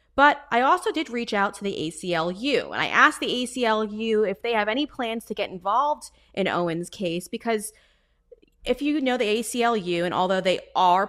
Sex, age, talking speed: female, 20-39, 190 wpm